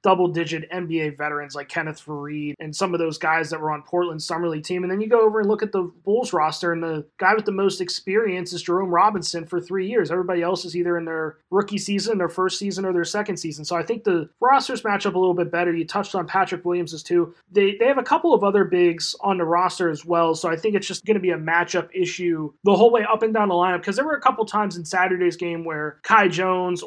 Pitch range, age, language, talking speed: 170-200 Hz, 20-39, English, 265 wpm